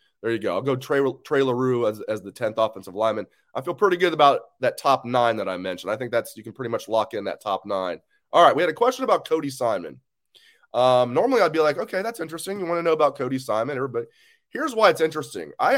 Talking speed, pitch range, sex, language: 255 wpm, 130-185 Hz, male, English